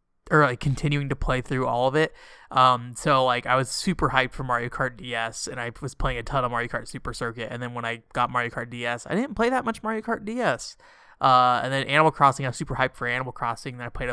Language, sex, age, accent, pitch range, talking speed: English, male, 20-39, American, 125-150 Hz, 265 wpm